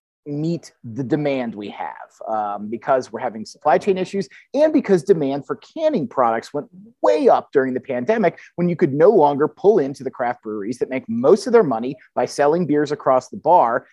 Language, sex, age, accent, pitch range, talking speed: English, male, 30-49, American, 135-210 Hz, 200 wpm